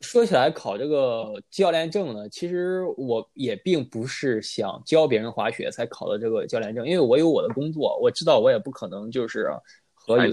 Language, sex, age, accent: Chinese, male, 20-39, native